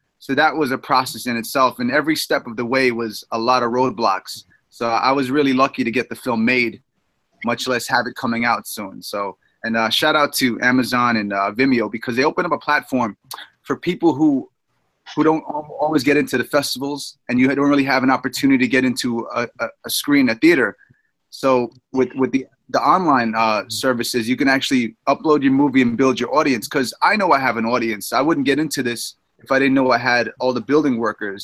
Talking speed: 220 wpm